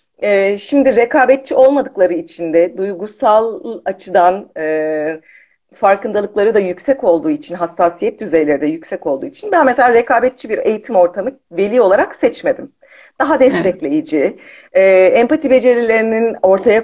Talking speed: 125 wpm